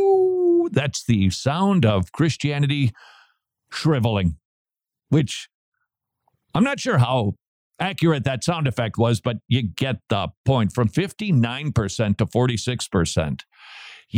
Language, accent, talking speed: English, American, 105 wpm